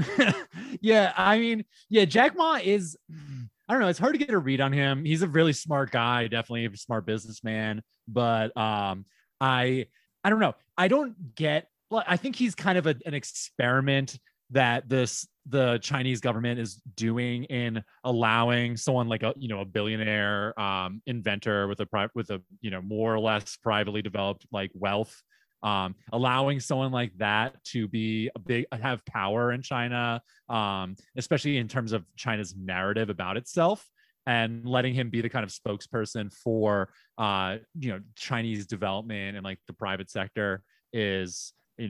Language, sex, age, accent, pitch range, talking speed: English, male, 20-39, American, 105-135 Hz, 170 wpm